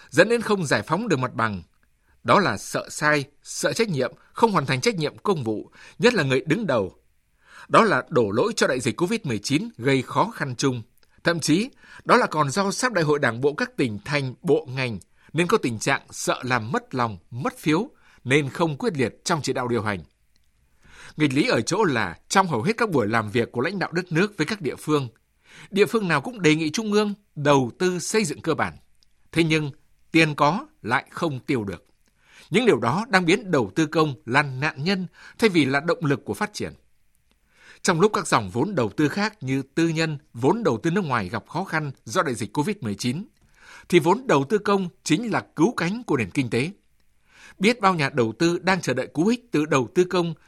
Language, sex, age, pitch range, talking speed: Vietnamese, male, 60-79, 130-190 Hz, 220 wpm